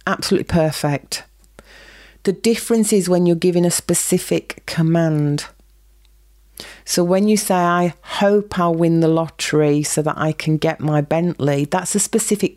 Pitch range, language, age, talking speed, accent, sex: 155-195 Hz, English, 40-59, 150 wpm, British, female